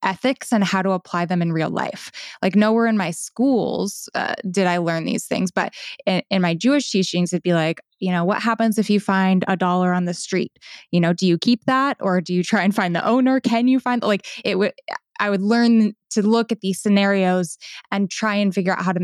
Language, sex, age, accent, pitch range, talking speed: English, female, 20-39, American, 175-210 Hz, 240 wpm